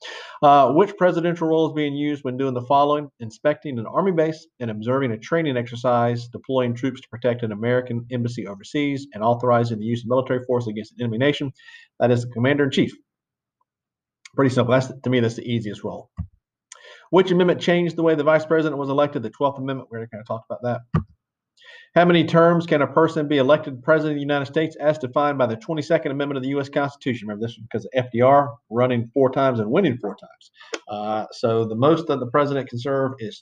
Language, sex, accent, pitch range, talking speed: English, male, American, 115-145 Hz, 215 wpm